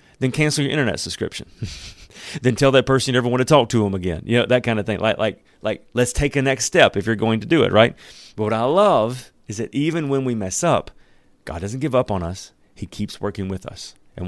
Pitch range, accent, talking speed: 95-120 Hz, American, 255 wpm